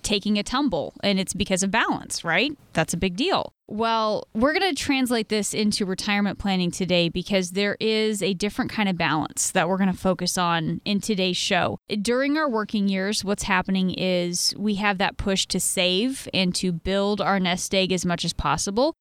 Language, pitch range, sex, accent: English, 185-225 Hz, female, American